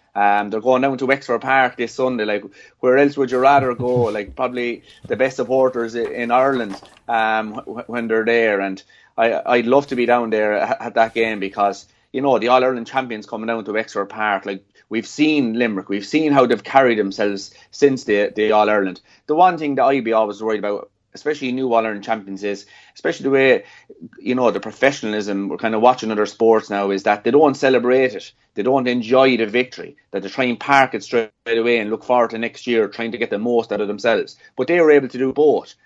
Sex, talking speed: male, 230 wpm